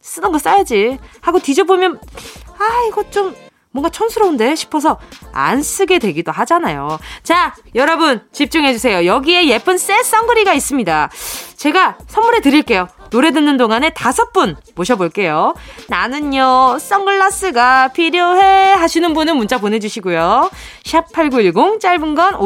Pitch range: 225-350 Hz